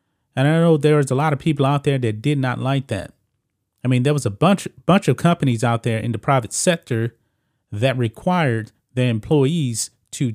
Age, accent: 30-49, American